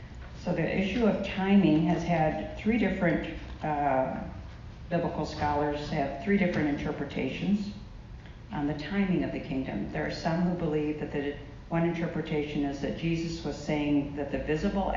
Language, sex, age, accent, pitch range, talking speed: English, female, 50-69, American, 140-165 Hz, 155 wpm